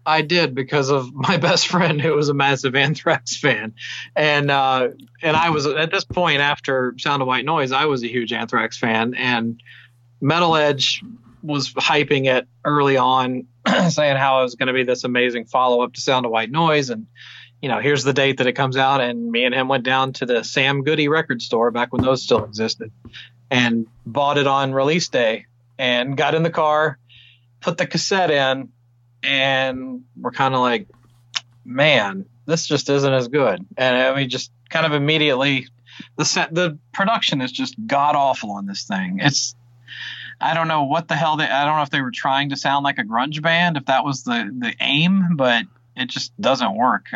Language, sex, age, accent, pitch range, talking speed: English, male, 40-59, American, 125-155 Hz, 200 wpm